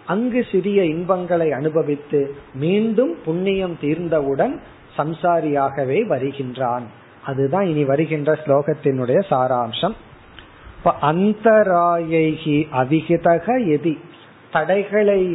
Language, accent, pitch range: Tamil, native, 145-190 Hz